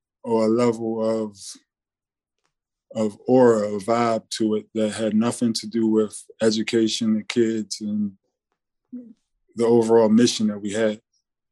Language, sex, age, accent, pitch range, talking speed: English, male, 20-39, American, 105-115 Hz, 135 wpm